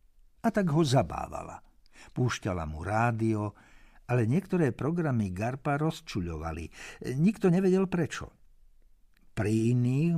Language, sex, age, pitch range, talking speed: Slovak, male, 60-79, 100-140 Hz, 100 wpm